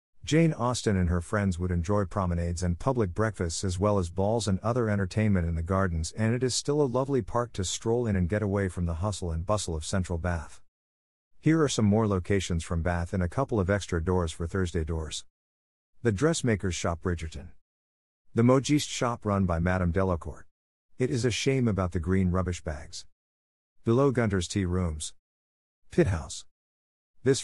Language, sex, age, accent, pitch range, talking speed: English, male, 50-69, American, 85-110 Hz, 185 wpm